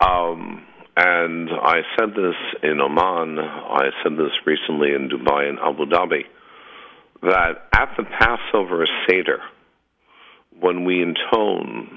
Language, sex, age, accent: English, male, 60-79, American